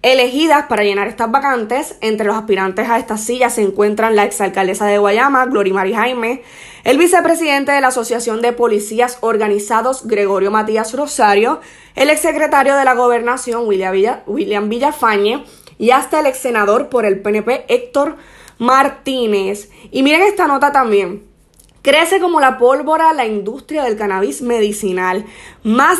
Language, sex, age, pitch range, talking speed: Spanish, female, 20-39, 210-275 Hz, 150 wpm